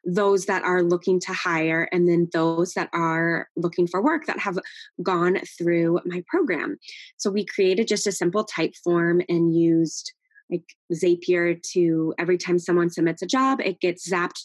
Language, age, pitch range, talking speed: English, 20-39, 170-210 Hz, 175 wpm